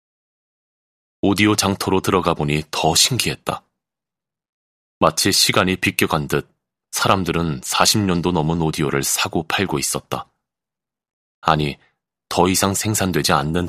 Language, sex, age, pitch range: Korean, male, 30-49, 75-90 Hz